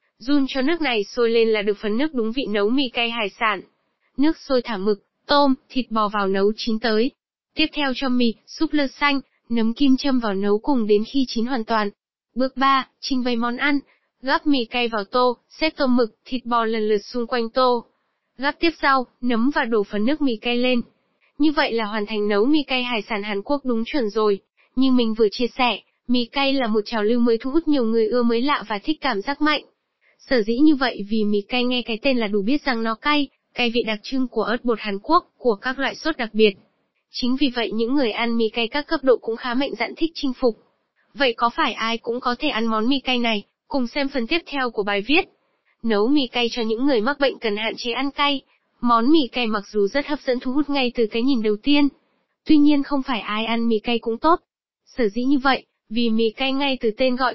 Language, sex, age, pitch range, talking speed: Vietnamese, female, 10-29, 225-275 Hz, 245 wpm